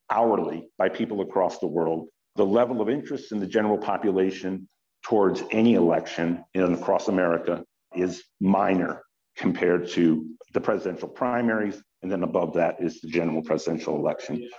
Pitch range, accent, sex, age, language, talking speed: 90-115 Hz, American, male, 50-69, English, 145 wpm